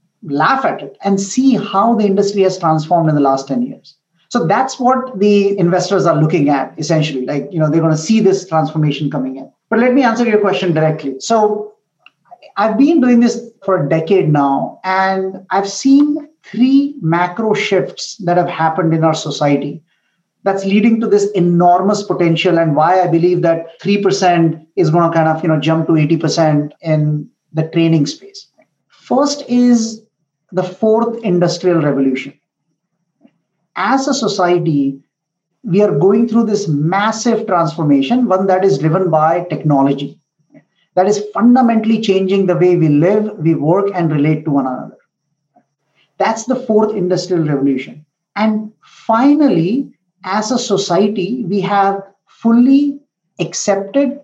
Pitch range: 160-215 Hz